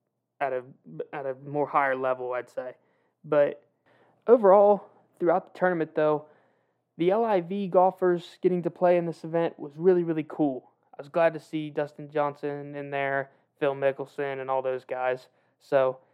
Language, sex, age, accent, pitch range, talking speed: English, male, 20-39, American, 140-170 Hz, 160 wpm